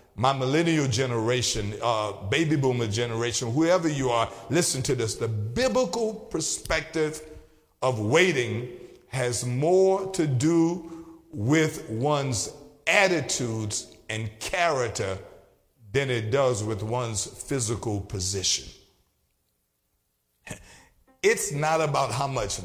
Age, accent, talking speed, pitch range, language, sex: 50-69, American, 105 wpm, 105-155 Hz, English, male